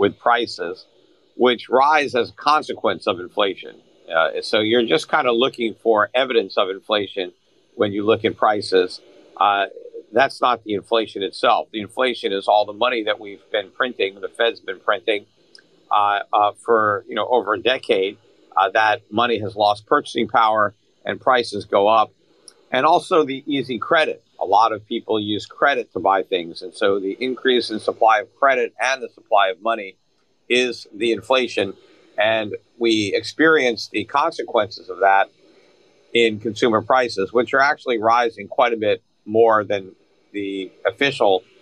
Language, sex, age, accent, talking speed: English, male, 50-69, American, 165 wpm